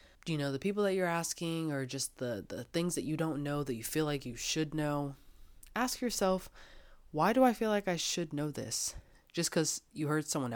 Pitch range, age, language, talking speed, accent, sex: 135-180 Hz, 20-39, English, 220 wpm, American, female